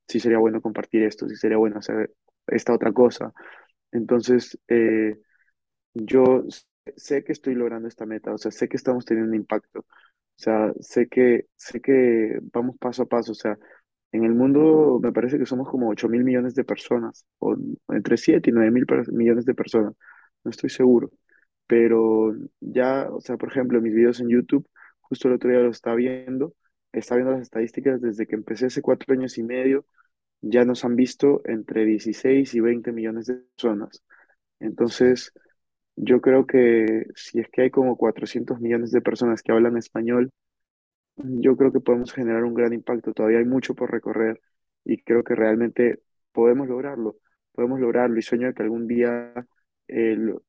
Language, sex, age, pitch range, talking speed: Spanish, male, 20-39, 115-125 Hz, 180 wpm